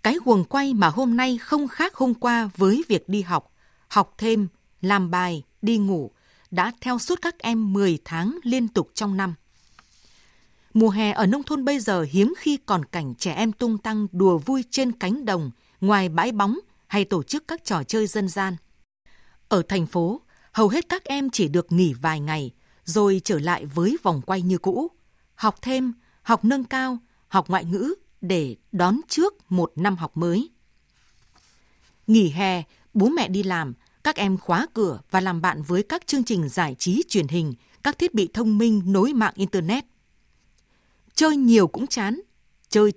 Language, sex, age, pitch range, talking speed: Vietnamese, female, 20-39, 180-235 Hz, 185 wpm